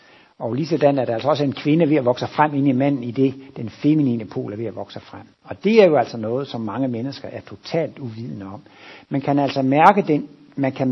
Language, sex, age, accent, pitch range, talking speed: Danish, male, 60-79, native, 120-155 Hz, 235 wpm